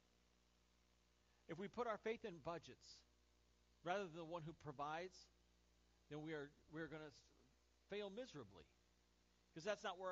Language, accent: English, American